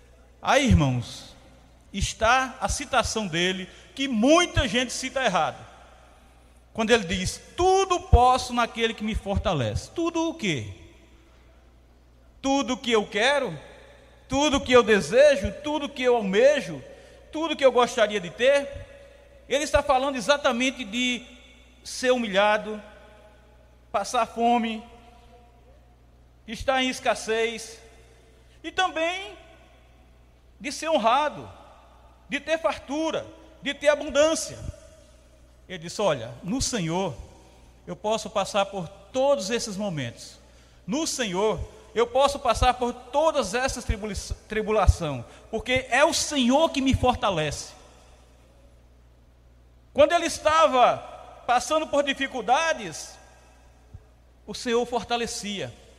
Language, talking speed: Portuguese, 110 wpm